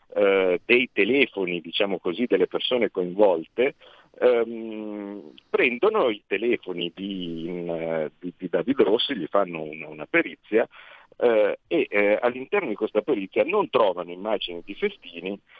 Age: 50-69